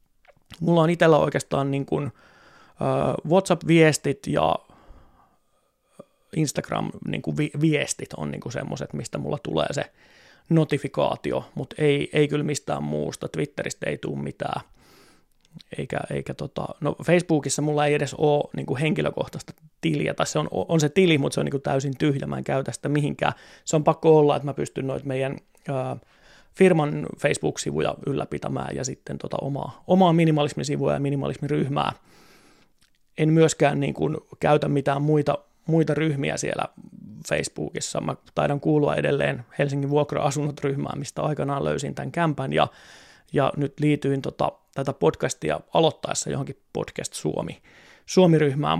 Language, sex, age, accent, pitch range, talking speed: Finnish, male, 30-49, native, 140-160 Hz, 135 wpm